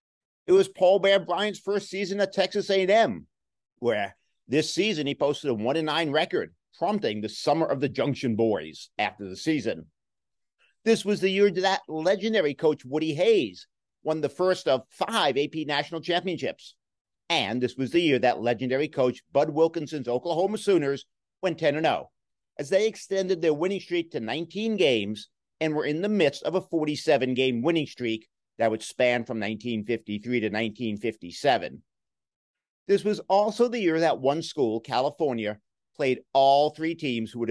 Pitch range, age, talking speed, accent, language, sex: 120-185 Hz, 50-69, 160 wpm, American, English, male